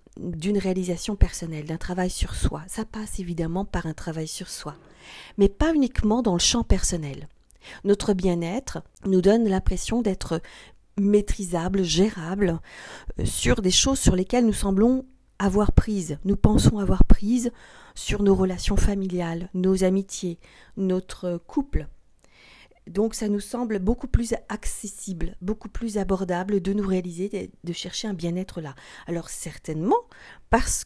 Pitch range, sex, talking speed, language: 180-220 Hz, female, 140 wpm, French